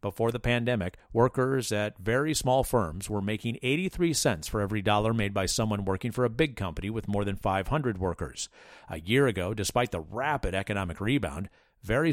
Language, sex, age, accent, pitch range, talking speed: English, male, 50-69, American, 100-130 Hz, 185 wpm